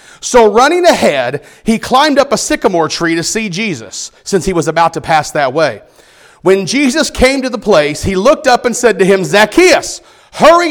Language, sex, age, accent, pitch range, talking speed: English, male, 40-59, American, 180-255 Hz, 195 wpm